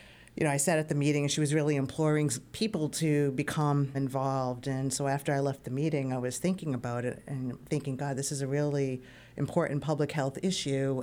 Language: English